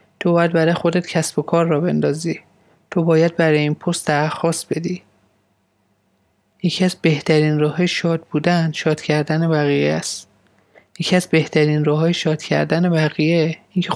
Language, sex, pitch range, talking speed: Persian, male, 150-180 Hz, 140 wpm